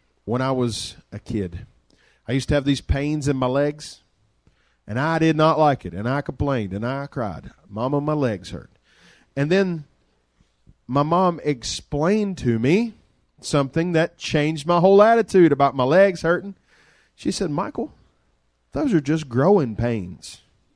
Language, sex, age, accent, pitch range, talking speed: English, male, 40-59, American, 125-200 Hz, 160 wpm